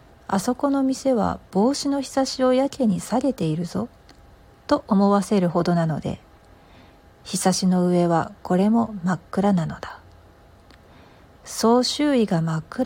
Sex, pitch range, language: female, 175-225 Hz, Japanese